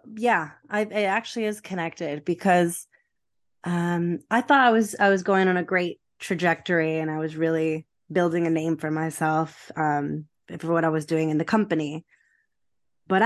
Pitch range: 160-200 Hz